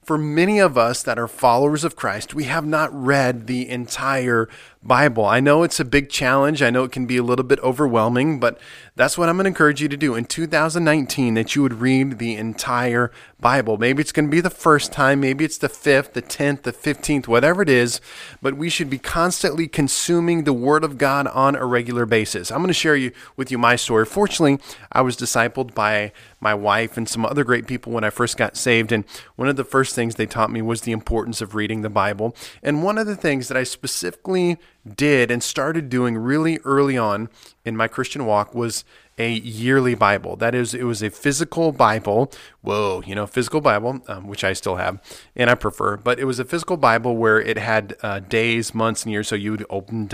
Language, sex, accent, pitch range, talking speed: English, male, American, 115-145 Hz, 220 wpm